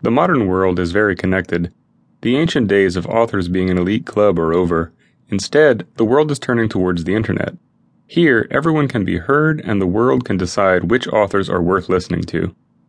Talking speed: 190 wpm